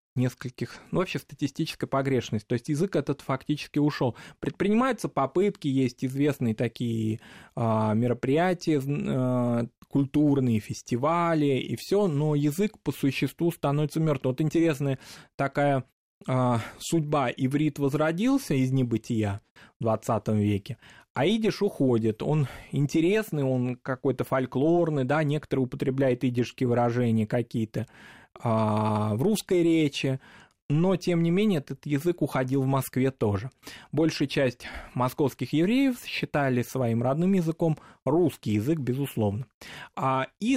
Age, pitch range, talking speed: 20-39, 120-160 Hz, 120 wpm